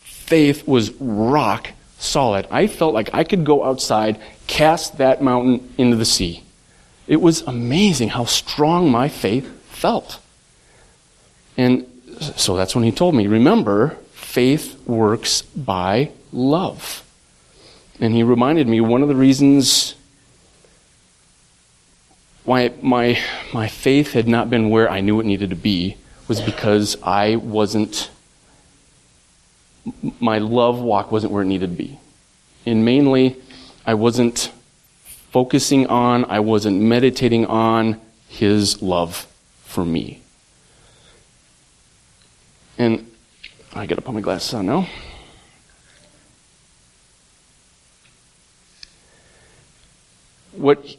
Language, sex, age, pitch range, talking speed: English, male, 30-49, 105-130 Hz, 115 wpm